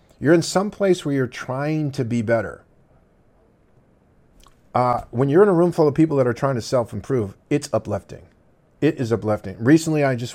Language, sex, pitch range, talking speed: English, male, 110-135 Hz, 185 wpm